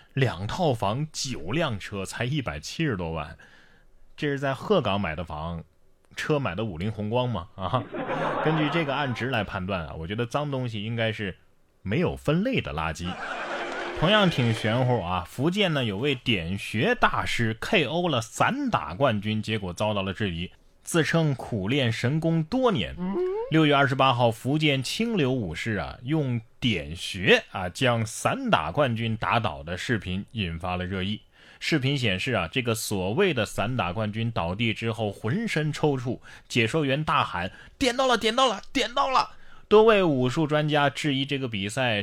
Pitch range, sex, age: 100-145 Hz, male, 20-39